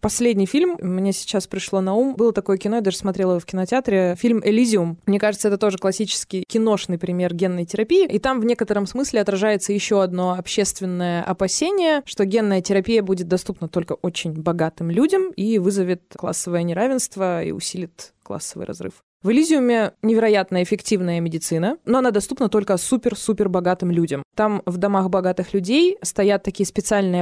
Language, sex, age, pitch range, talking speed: Russian, female, 20-39, 185-230 Hz, 165 wpm